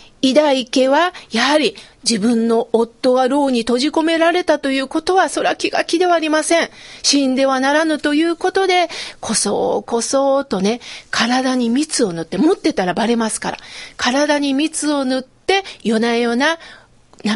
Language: Japanese